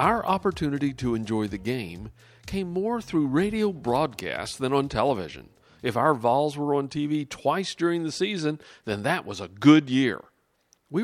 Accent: American